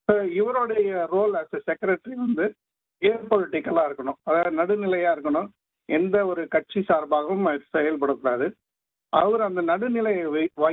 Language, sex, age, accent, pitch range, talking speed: Tamil, male, 50-69, native, 145-190 Hz, 110 wpm